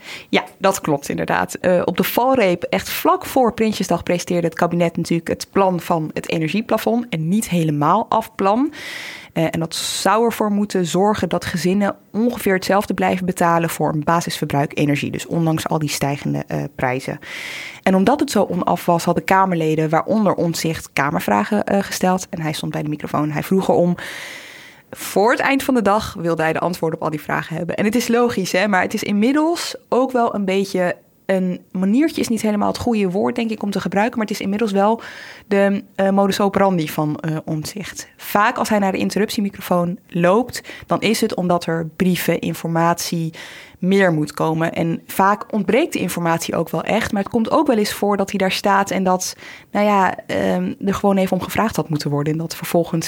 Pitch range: 165-215 Hz